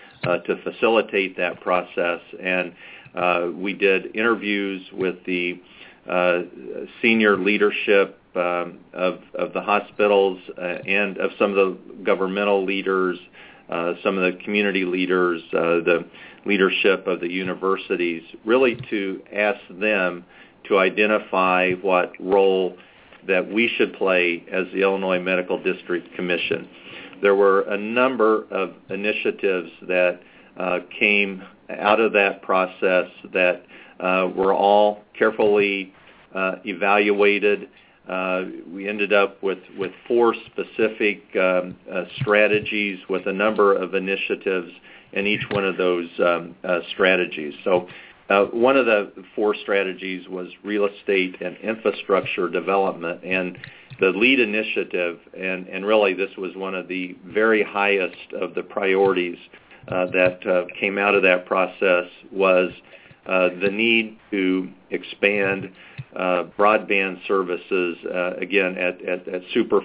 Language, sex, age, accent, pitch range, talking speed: English, male, 40-59, American, 90-100 Hz, 130 wpm